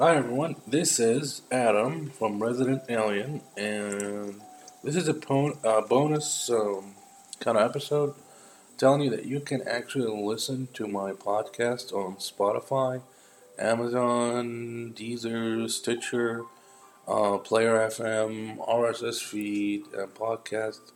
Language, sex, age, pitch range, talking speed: English, male, 20-39, 100-130 Hz, 110 wpm